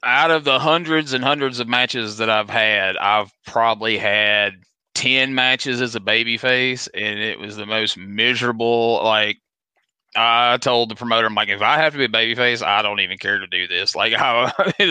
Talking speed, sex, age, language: 195 wpm, male, 30-49, English